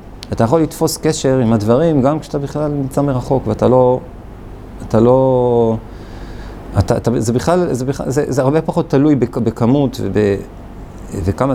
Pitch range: 105-145 Hz